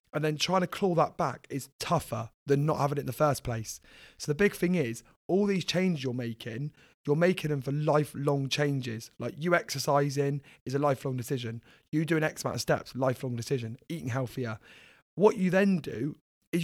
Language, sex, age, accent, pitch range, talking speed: English, male, 30-49, British, 135-180 Hz, 200 wpm